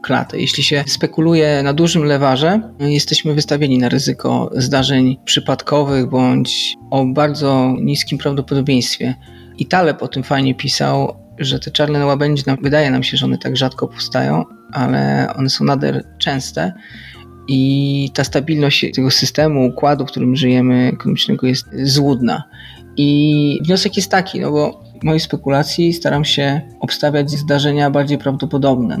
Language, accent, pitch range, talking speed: Polish, native, 130-150 Hz, 140 wpm